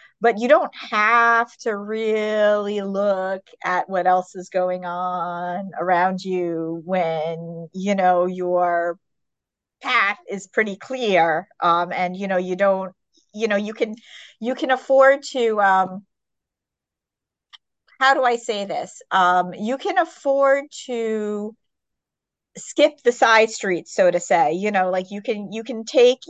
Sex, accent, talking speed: female, American, 145 wpm